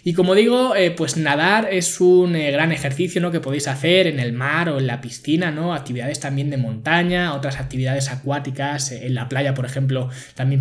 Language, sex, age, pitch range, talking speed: Spanish, male, 20-39, 135-170 Hz, 210 wpm